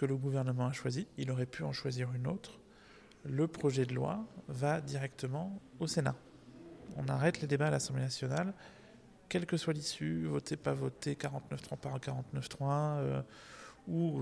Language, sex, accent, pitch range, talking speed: French, male, French, 130-150 Hz, 170 wpm